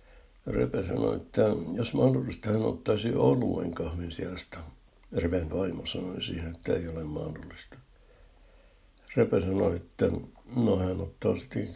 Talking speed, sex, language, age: 120 wpm, male, Finnish, 60-79